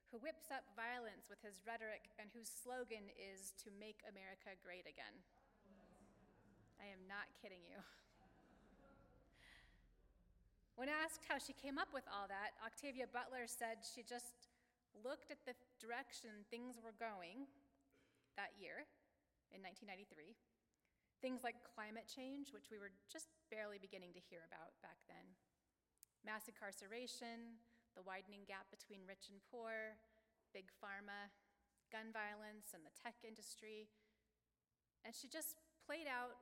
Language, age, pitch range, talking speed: English, 30-49, 200-245 Hz, 135 wpm